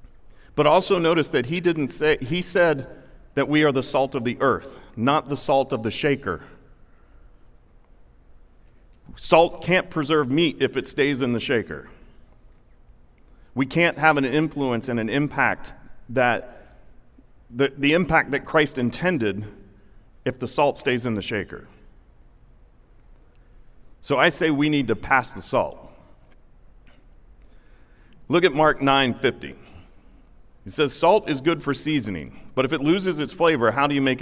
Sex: male